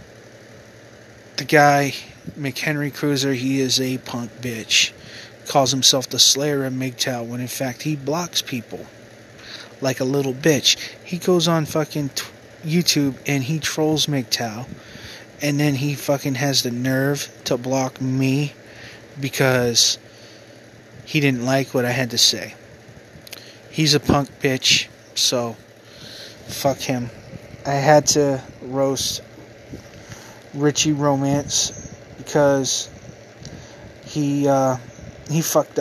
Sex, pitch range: male, 115-140 Hz